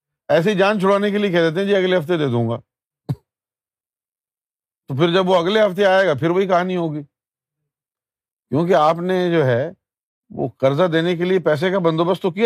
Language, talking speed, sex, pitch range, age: Urdu, 195 wpm, male, 130-180 Hz, 50-69